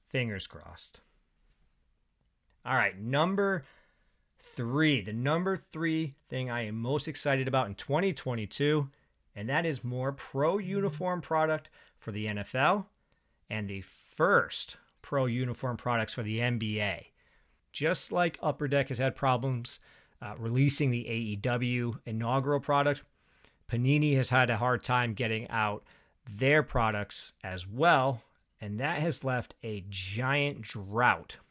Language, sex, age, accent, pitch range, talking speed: English, male, 40-59, American, 110-145 Hz, 130 wpm